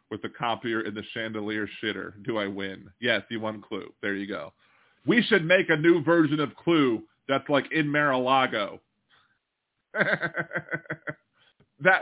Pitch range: 115-160 Hz